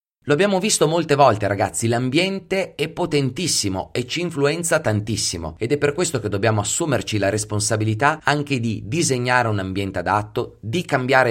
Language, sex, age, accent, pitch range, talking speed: Italian, male, 30-49, native, 100-145 Hz, 160 wpm